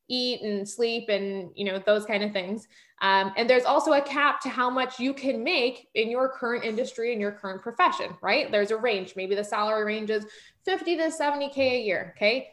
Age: 20-39